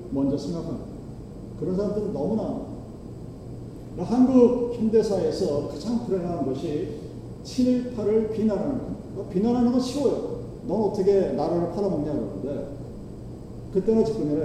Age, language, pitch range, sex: 40-59, Korean, 195-240 Hz, male